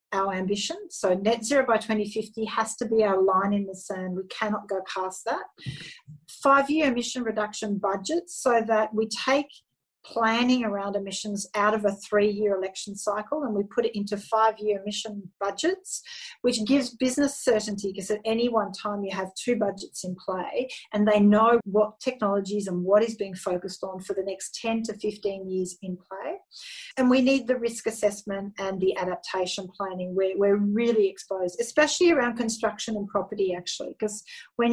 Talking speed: 180 wpm